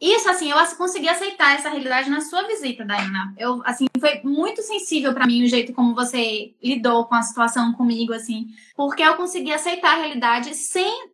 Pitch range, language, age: 240-330 Hz, Portuguese, 10-29